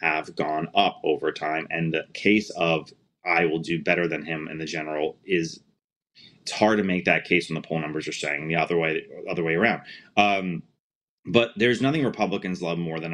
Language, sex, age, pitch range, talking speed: English, male, 30-49, 85-105 Hz, 205 wpm